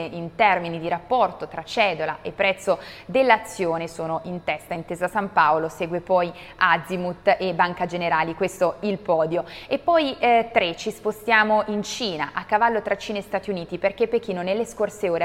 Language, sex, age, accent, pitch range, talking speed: Italian, female, 20-39, native, 170-215 Hz, 175 wpm